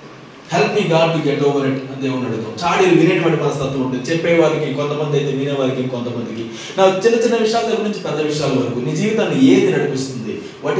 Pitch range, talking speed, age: 140-190 Hz, 150 wpm, 20-39